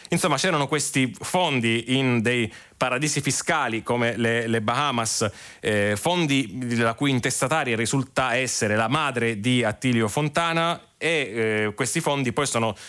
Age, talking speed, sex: 30-49, 140 wpm, male